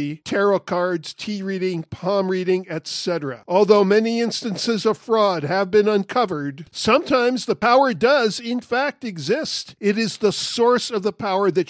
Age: 50-69